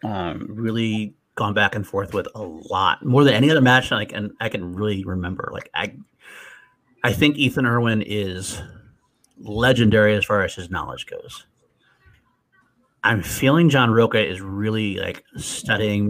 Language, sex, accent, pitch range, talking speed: English, male, American, 100-125 Hz, 155 wpm